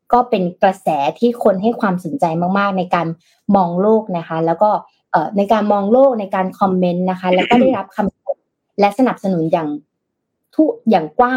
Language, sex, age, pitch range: Thai, female, 20-39, 175-220 Hz